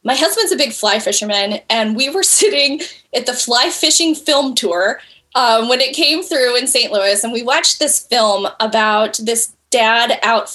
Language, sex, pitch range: English, female, 215-285 Hz